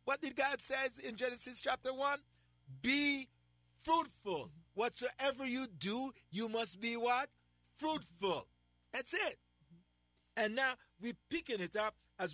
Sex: male